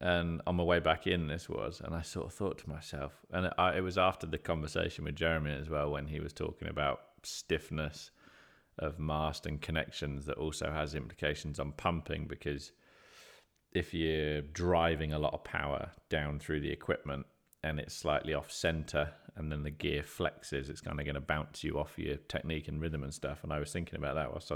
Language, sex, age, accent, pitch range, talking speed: English, male, 30-49, British, 75-85 Hz, 205 wpm